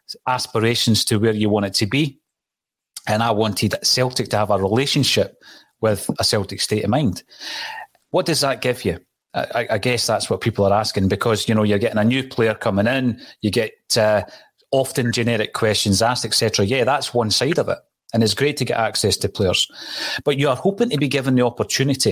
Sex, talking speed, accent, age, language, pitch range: male, 205 wpm, British, 30-49, English, 110-135 Hz